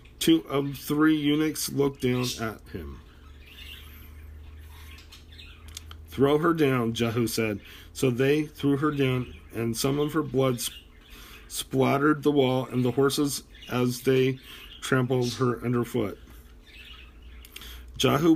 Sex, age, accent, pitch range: male, 40-59, American, 110-135 Hz